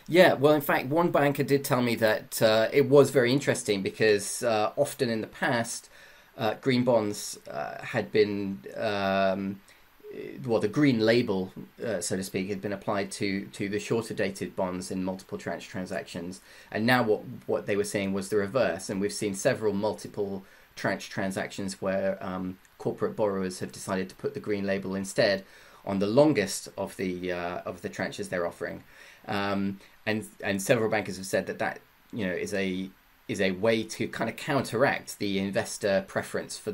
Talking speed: 185 wpm